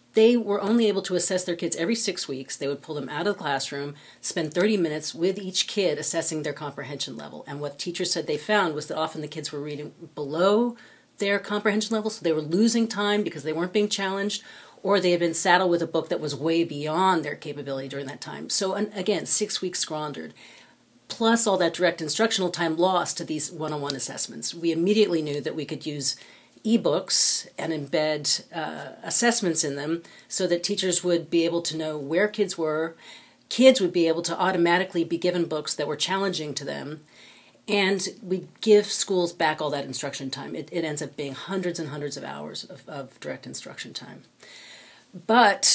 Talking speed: 200 wpm